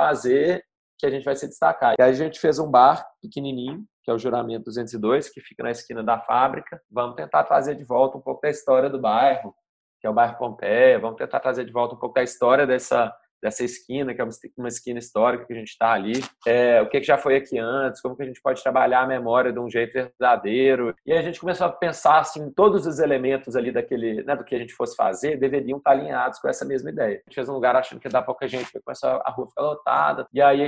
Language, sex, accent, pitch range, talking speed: Portuguese, male, Brazilian, 120-140 Hz, 260 wpm